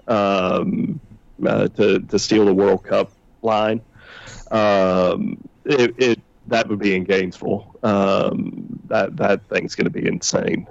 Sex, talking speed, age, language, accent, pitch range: male, 140 wpm, 40-59, English, American, 100-115 Hz